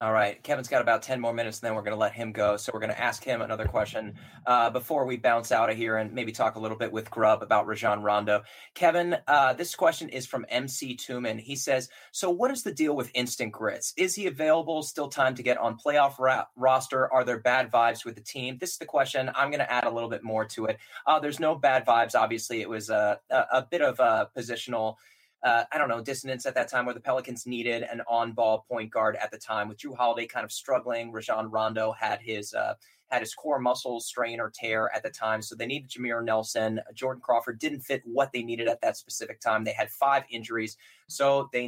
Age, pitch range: 20-39, 110-130 Hz